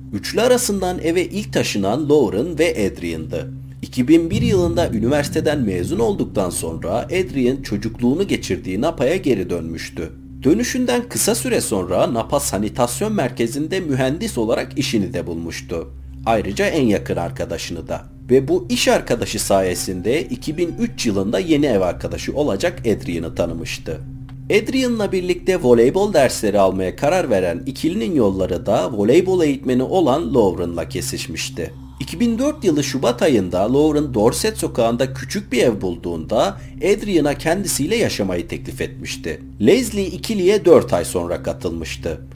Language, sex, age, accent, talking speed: Turkish, male, 50-69, native, 125 wpm